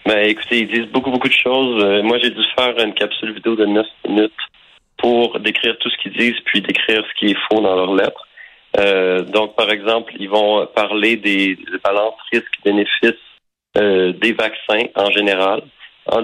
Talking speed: 190 wpm